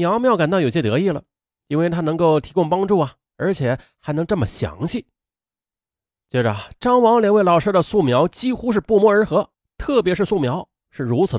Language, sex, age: Chinese, male, 30-49